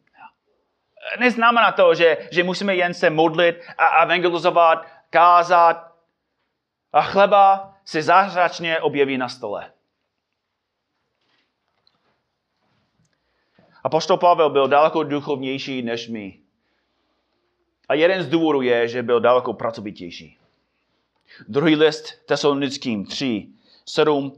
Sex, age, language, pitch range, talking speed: male, 30-49, Czech, 145-185 Hz, 100 wpm